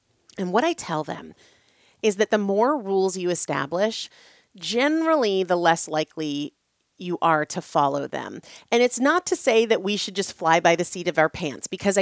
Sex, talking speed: female, 190 wpm